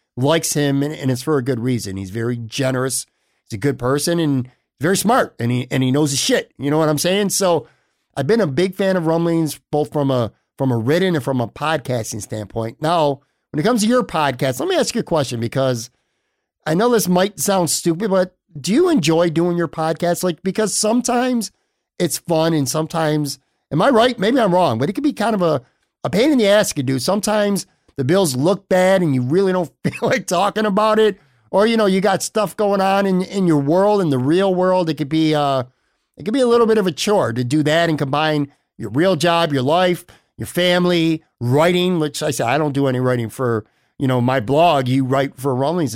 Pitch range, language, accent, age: 135-190 Hz, English, American, 50-69